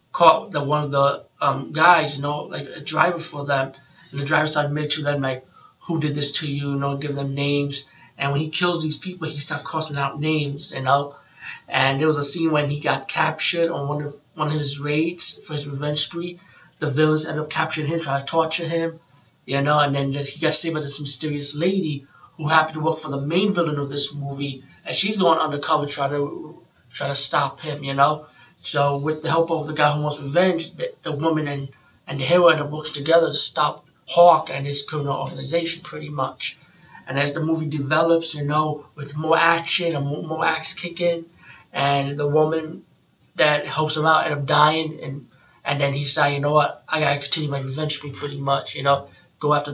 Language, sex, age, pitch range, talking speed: English, male, 30-49, 140-160 Hz, 225 wpm